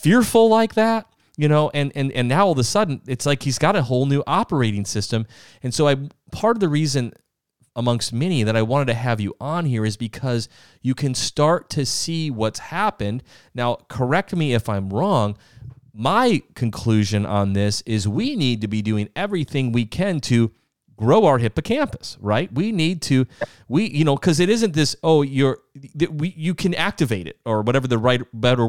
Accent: American